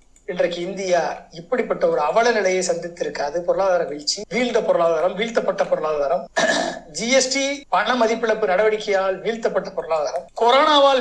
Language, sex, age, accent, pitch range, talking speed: Tamil, male, 50-69, native, 185-250 Hz, 110 wpm